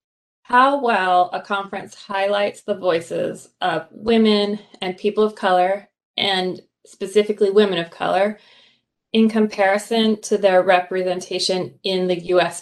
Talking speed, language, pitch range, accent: 125 wpm, English, 185-220 Hz, American